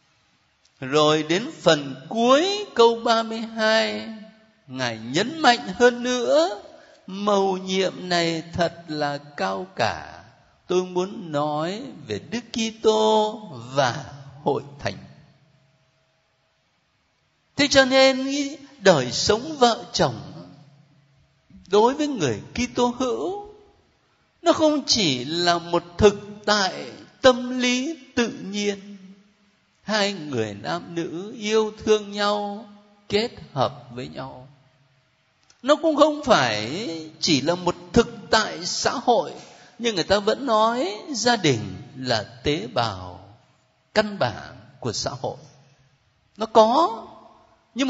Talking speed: 115 wpm